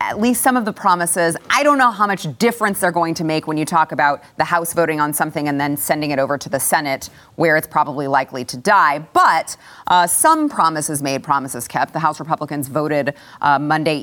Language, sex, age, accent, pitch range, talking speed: English, female, 30-49, American, 140-170 Hz, 220 wpm